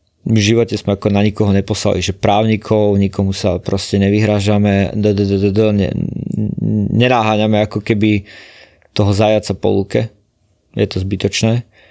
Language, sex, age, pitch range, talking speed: Slovak, male, 20-39, 100-110 Hz, 120 wpm